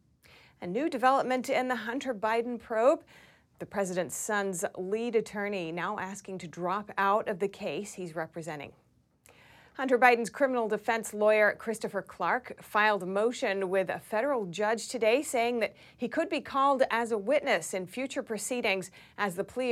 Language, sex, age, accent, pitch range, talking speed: English, female, 30-49, American, 190-235 Hz, 160 wpm